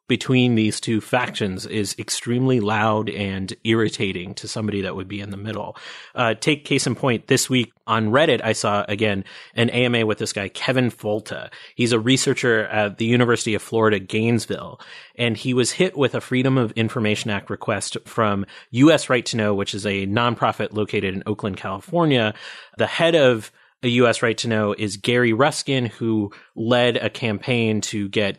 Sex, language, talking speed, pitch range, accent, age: male, English, 180 wpm, 105-125 Hz, American, 30-49